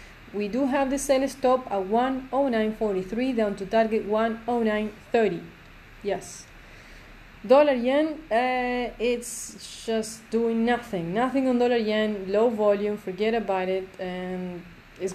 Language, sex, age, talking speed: English, female, 30-49, 125 wpm